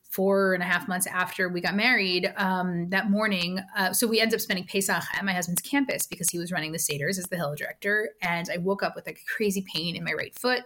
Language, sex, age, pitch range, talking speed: English, female, 20-39, 180-215 Hz, 260 wpm